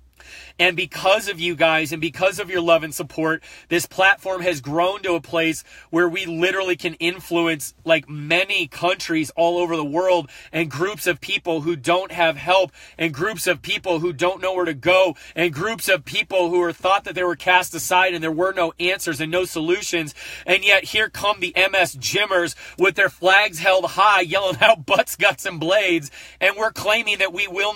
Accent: American